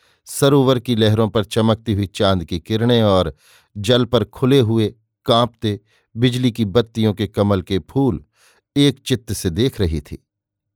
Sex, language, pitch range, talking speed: male, Hindi, 105-125 Hz, 155 wpm